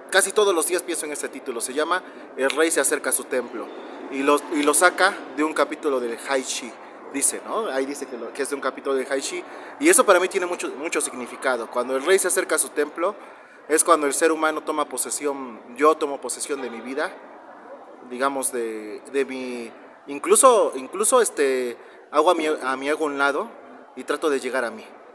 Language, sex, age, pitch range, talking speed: Spanish, male, 30-49, 135-165 Hz, 215 wpm